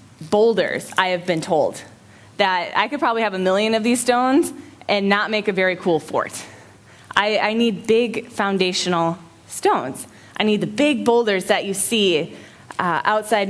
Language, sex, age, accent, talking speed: English, female, 20-39, American, 170 wpm